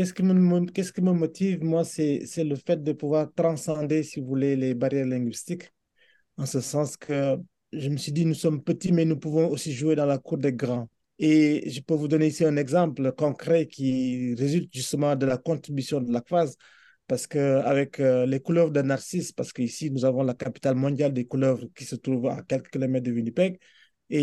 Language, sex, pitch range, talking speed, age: French, male, 135-165 Hz, 210 wpm, 30-49